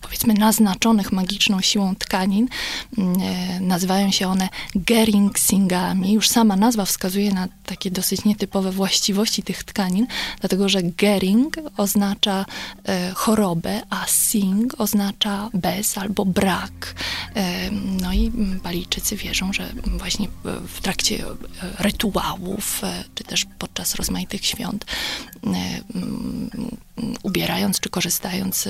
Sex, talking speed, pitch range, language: female, 115 wpm, 190-215 Hz, Polish